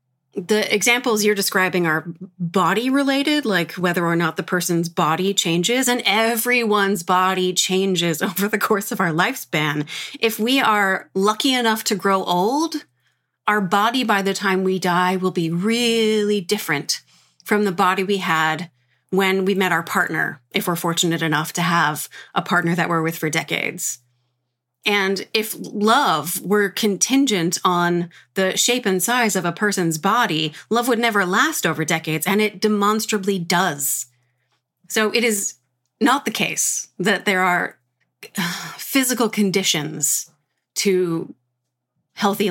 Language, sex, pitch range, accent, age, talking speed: English, female, 170-220 Hz, American, 30-49, 145 wpm